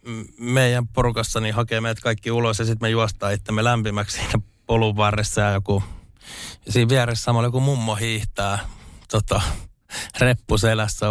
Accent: native